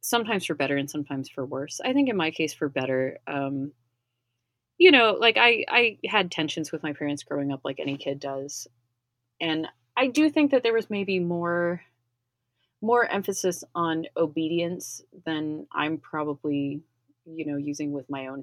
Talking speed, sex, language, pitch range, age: 175 wpm, female, English, 135-175 Hz, 30-49